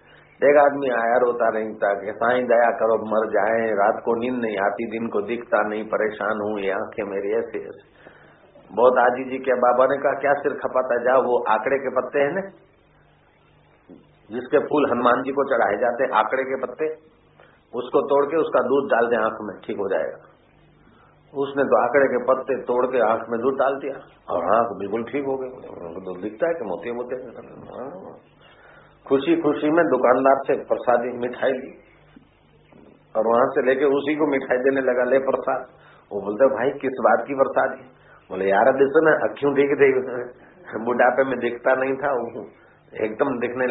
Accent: native